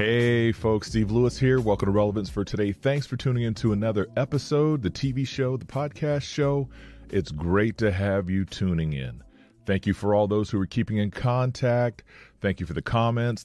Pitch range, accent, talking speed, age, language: 90-115 Hz, American, 200 wpm, 30-49, English